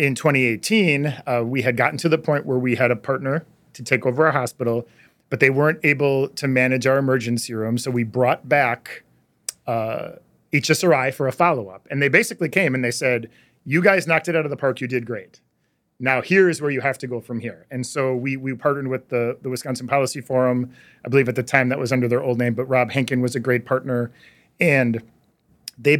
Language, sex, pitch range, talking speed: English, male, 125-145 Hz, 220 wpm